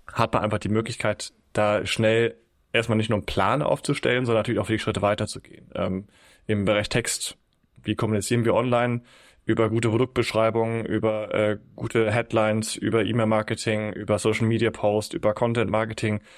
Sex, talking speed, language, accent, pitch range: male, 150 wpm, German, German, 100-115 Hz